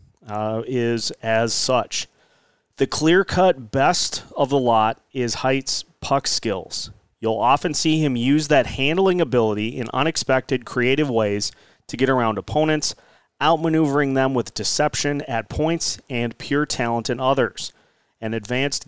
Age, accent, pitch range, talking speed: 30-49, American, 115-145 Hz, 135 wpm